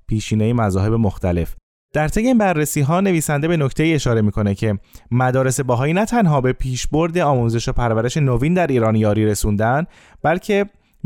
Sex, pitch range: male, 110-150 Hz